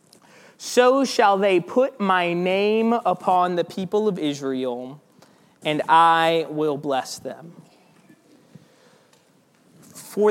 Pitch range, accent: 165-225 Hz, American